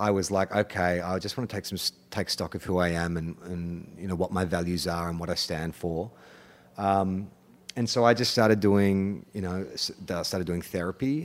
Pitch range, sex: 90-105 Hz, male